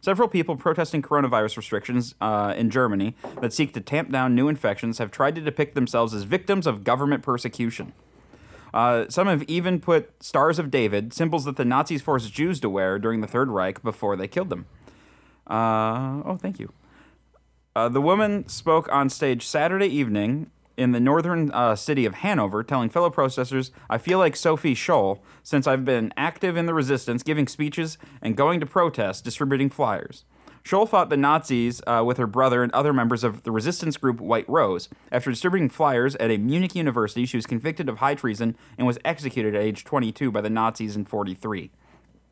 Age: 30-49